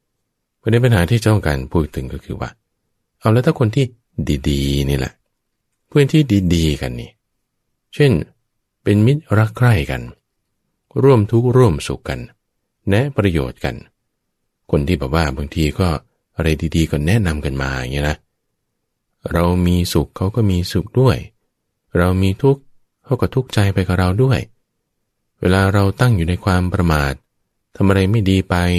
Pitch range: 75-110 Hz